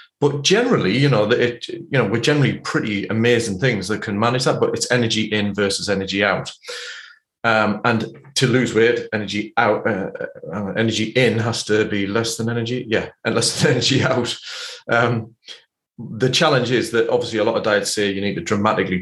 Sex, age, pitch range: male, 30-49, 105-130 Hz